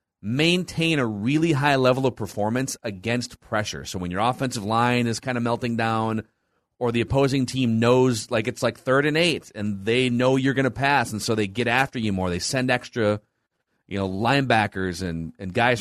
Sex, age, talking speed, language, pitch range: male, 30-49, 200 wpm, English, 110-145 Hz